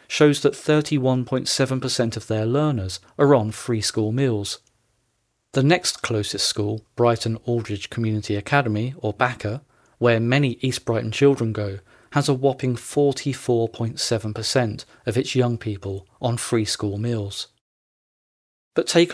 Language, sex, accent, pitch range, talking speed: English, male, British, 110-145 Hz, 130 wpm